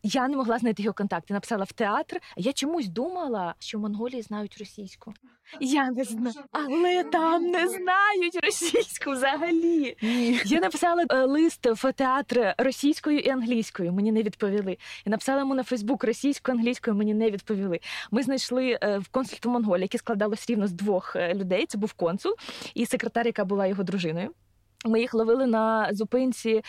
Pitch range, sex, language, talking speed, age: 200-260 Hz, female, Russian, 165 wpm, 20-39